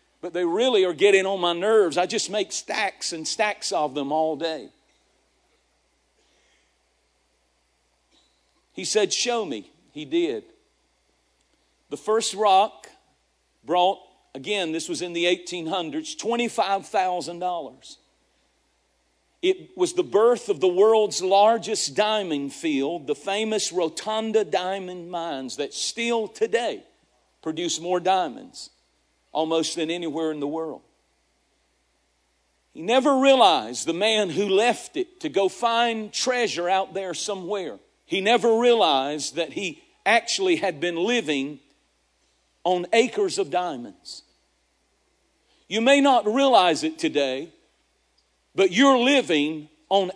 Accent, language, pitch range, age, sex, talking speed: American, English, 165-240 Hz, 50-69, male, 120 wpm